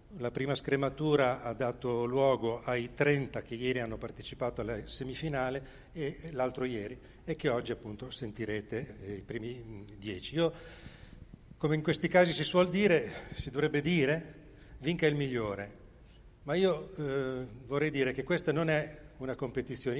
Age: 40-59